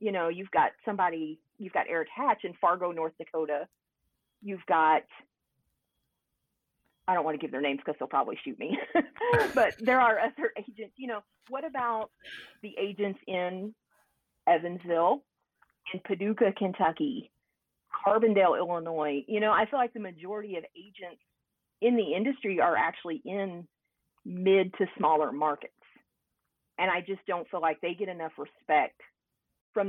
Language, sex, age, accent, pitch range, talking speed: English, female, 40-59, American, 160-210 Hz, 150 wpm